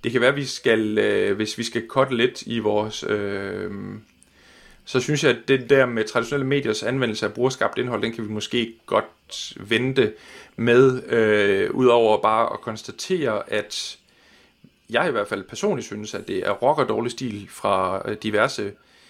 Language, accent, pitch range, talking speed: Danish, native, 110-135 Hz, 175 wpm